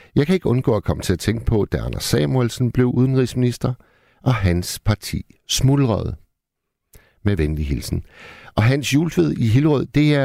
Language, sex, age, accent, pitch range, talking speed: Danish, male, 60-79, native, 90-130 Hz, 170 wpm